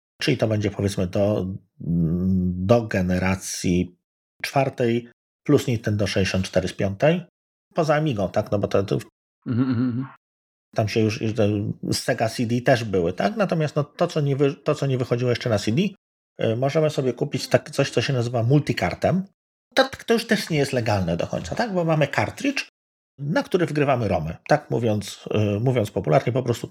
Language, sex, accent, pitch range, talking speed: Polish, male, native, 100-150 Hz, 175 wpm